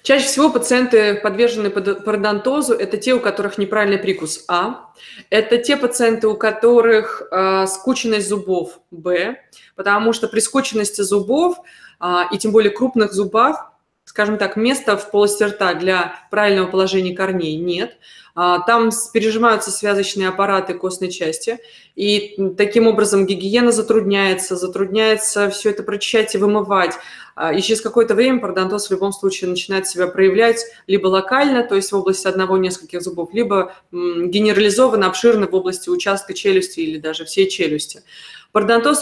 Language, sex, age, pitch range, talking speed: Russian, female, 20-39, 185-225 Hz, 140 wpm